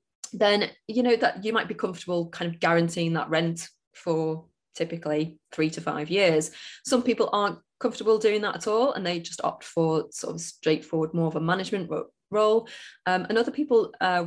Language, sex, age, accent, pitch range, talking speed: English, female, 20-39, British, 170-215 Hz, 190 wpm